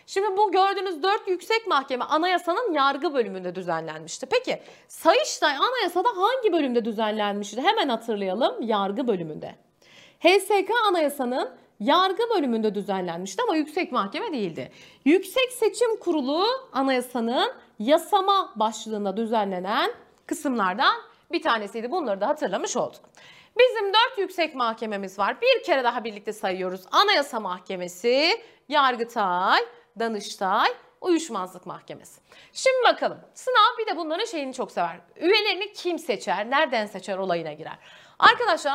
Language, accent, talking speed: Turkish, native, 120 wpm